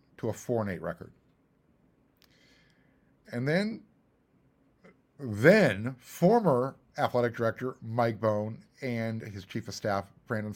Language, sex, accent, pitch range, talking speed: English, male, American, 115-155 Hz, 115 wpm